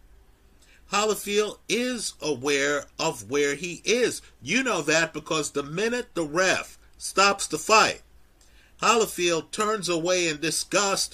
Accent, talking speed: American, 125 wpm